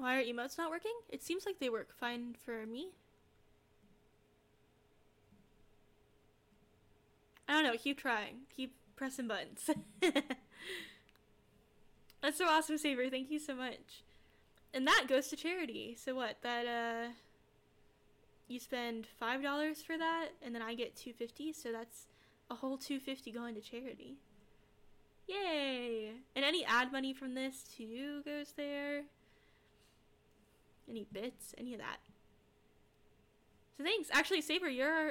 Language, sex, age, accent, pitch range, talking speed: English, female, 10-29, American, 230-300 Hz, 135 wpm